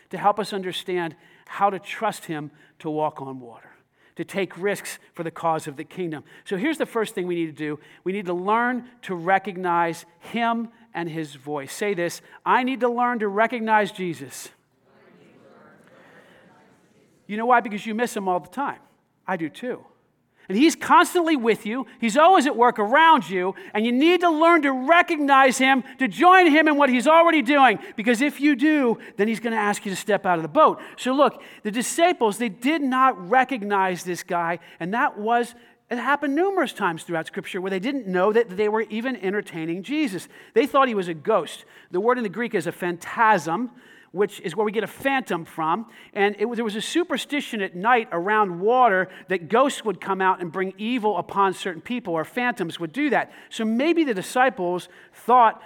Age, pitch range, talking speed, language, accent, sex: 40-59, 180-250 Hz, 205 wpm, English, American, male